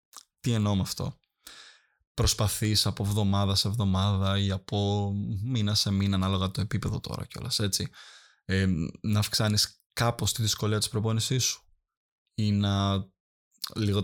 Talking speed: 135 wpm